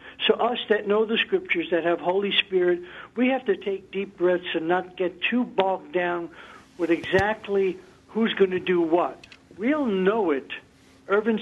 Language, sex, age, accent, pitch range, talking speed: English, male, 60-79, American, 175-225 Hz, 175 wpm